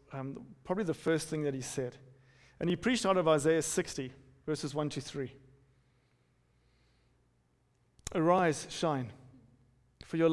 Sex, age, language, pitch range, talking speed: male, 40-59, English, 125-165 Hz, 135 wpm